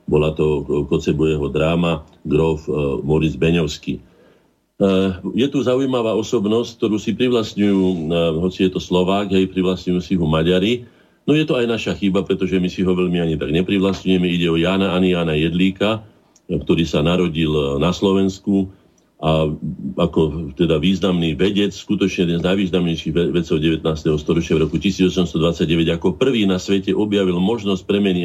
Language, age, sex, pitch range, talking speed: Slovak, 50-69, male, 80-100 Hz, 155 wpm